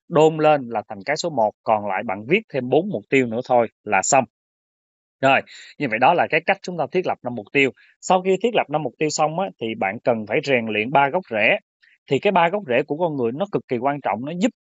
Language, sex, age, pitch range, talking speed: Vietnamese, male, 20-39, 120-155 Hz, 270 wpm